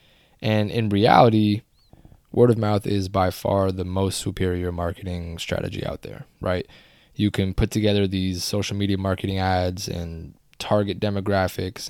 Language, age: English, 20-39